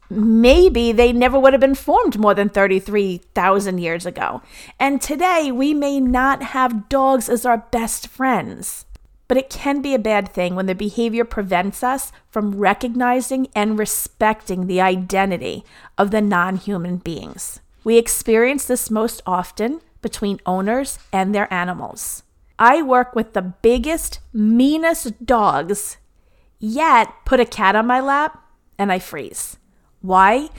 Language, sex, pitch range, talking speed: English, female, 195-255 Hz, 145 wpm